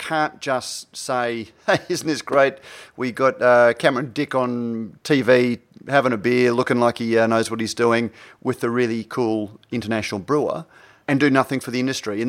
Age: 30-49